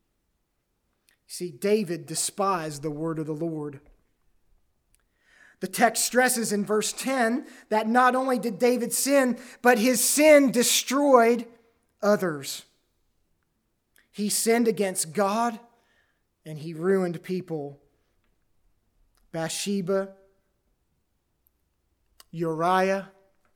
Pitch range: 170-255 Hz